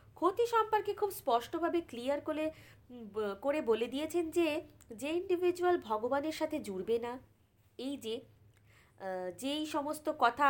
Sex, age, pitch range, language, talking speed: female, 20-39, 225-315 Hz, Bengali, 115 wpm